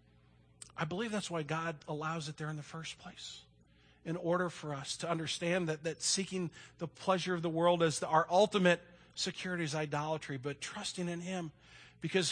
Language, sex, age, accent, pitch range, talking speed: English, male, 40-59, American, 150-185 Hz, 180 wpm